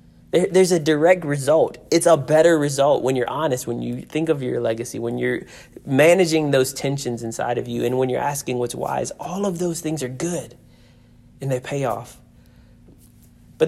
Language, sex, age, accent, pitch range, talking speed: English, male, 30-49, American, 130-185 Hz, 185 wpm